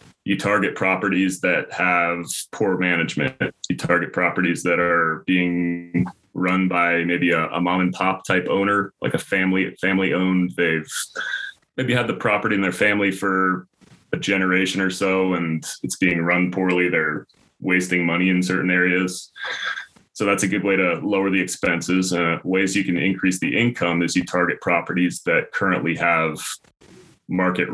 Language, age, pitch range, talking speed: English, 20-39, 85-95 Hz, 165 wpm